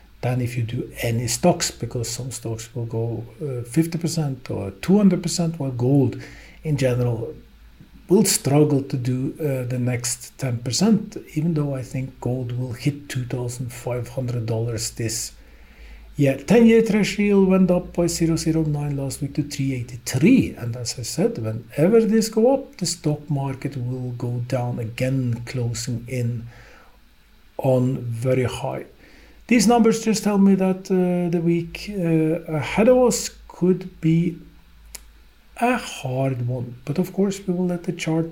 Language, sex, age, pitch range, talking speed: English, male, 50-69, 120-170 Hz, 140 wpm